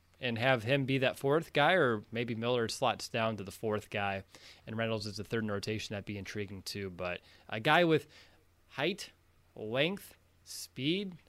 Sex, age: male, 20-39